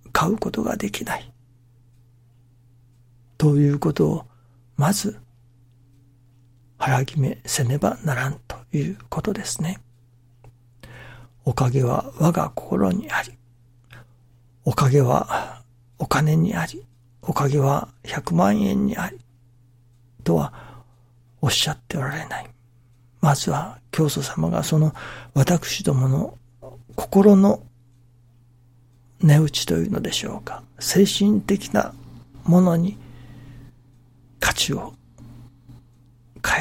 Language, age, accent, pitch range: Japanese, 60-79, native, 120-150 Hz